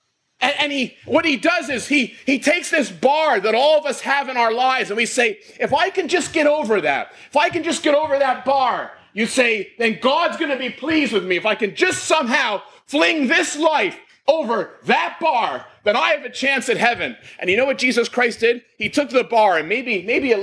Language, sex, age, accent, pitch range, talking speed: English, male, 30-49, American, 200-285 Hz, 235 wpm